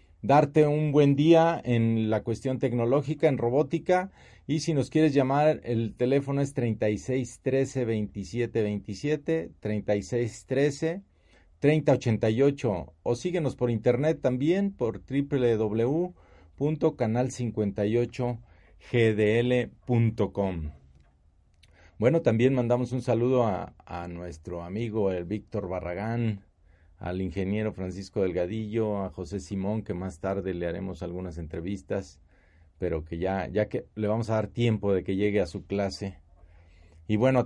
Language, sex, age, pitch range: Spanish, male, 40-59, 90-125 Hz